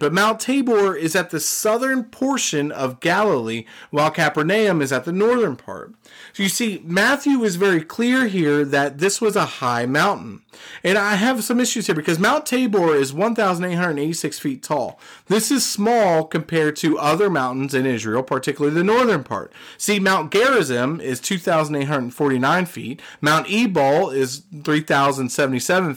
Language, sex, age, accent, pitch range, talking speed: English, male, 30-49, American, 135-205 Hz, 155 wpm